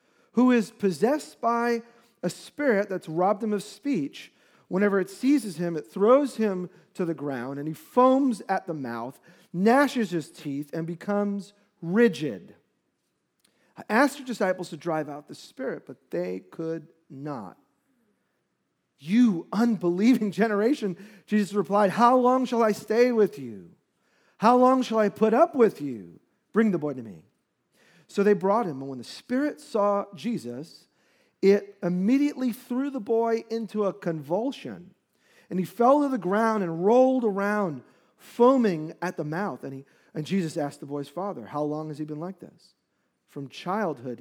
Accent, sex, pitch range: American, male, 165-235 Hz